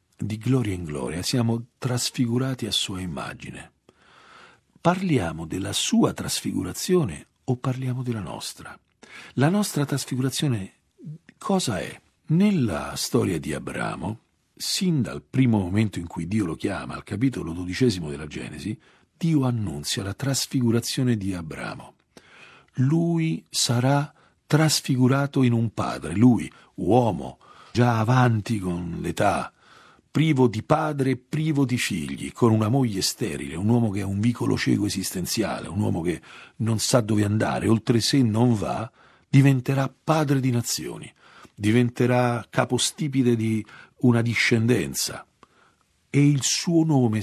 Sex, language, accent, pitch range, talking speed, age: male, Italian, native, 110-140 Hz, 125 wpm, 50-69